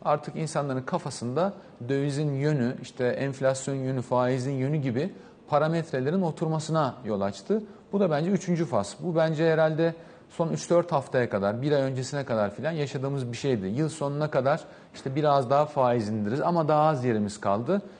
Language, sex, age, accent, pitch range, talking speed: Turkish, male, 40-59, native, 130-165 Hz, 160 wpm